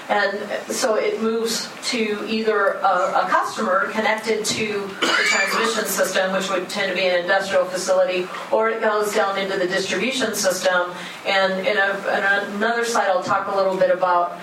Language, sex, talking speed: English, female, 175 wpm